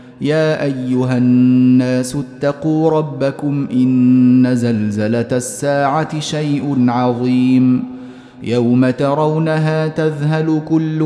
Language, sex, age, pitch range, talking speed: Arabic, male, 30-49, 130-155 Hz, 75 wpm